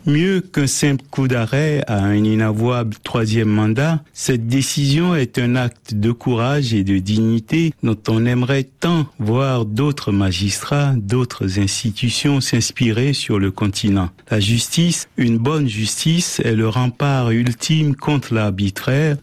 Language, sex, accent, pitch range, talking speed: French, male, French, 110-140 Hz, 135 wpm